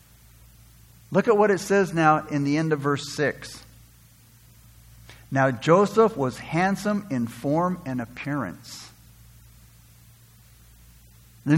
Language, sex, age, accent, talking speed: English, male, 60-79, American, 110 wpm